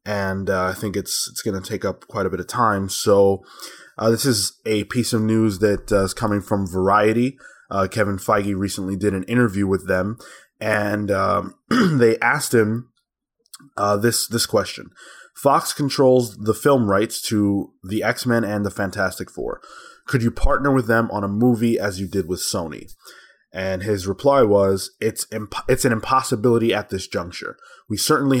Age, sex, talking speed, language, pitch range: 20-39, male, 180 wpm, English, 100-120 Hz